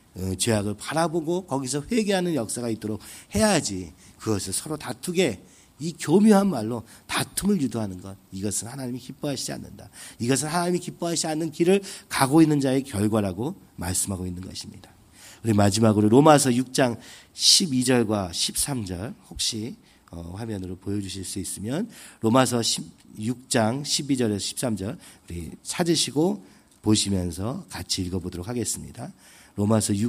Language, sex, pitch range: Korean, male, 95-140 Hz